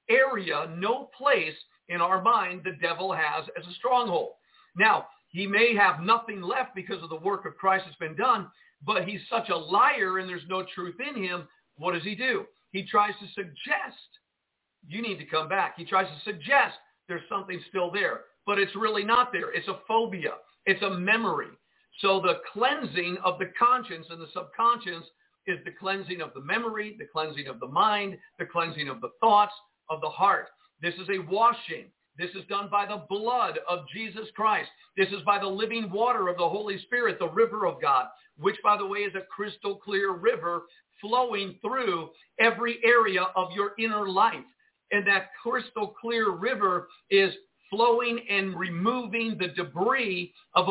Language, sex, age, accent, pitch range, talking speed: English, male, 50-69, American, 180-230 Hz, 185 wpm